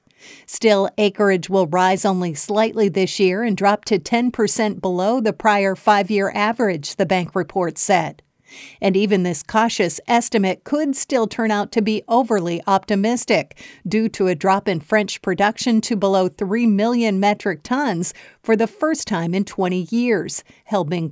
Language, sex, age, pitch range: English, female, 50-69, 190-225 Hz